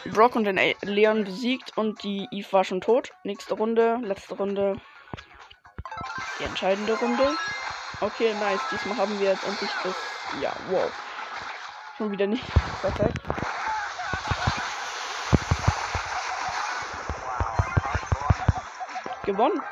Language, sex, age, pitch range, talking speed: German, female, 20-39, 190-220 Hz, 100 wpm